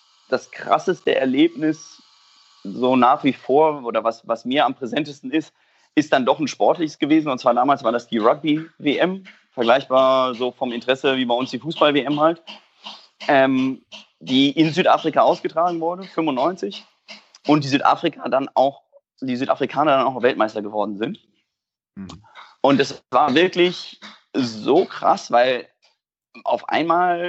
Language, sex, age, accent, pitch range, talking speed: German, male, 30-49, German, 125-165 Hz, 145 wpm